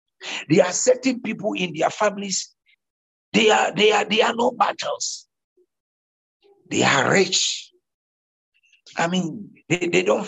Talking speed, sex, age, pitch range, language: 135 wpm, male, 60-79, 175-235 Hz, English